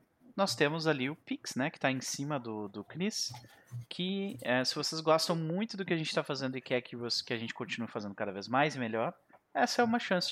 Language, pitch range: Portuguese, 120-155 Hz